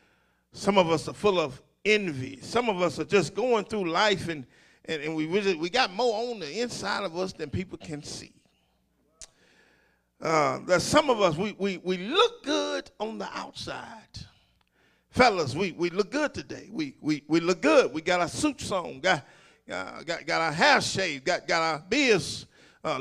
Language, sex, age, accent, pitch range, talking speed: English, male, 50-69, American, 170-235 Hz, 190 wpm